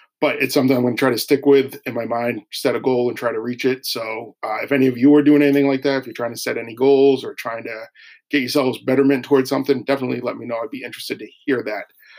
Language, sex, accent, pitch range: English, male, American, 120-140 Hz